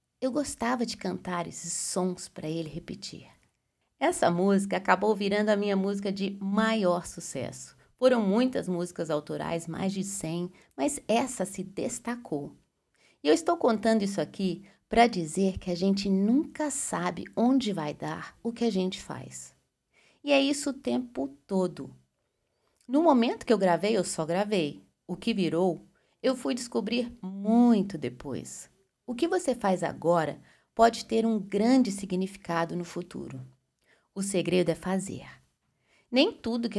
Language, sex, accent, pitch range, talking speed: Portuguese, female, Brazilian, 170-230 Hz, 150 wpm